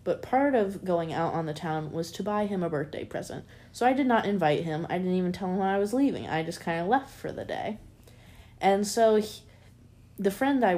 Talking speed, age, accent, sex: 240 wpm, 20-39, American, female